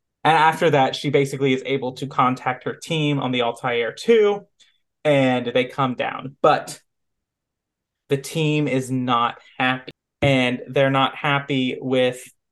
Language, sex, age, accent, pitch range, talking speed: English, male, 30-49, American, 125-140 Hz, 145 wpm